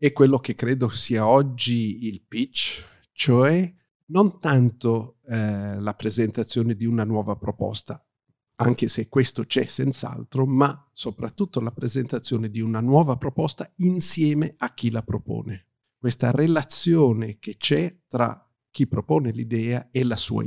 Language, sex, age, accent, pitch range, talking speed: Italian, male, 50-69, native, 115-140 Hz, 140 wpm